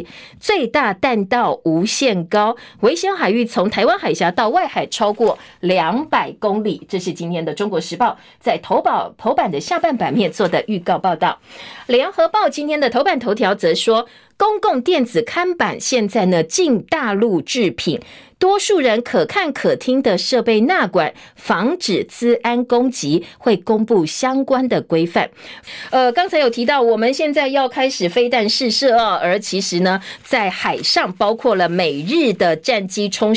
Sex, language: female, Chinese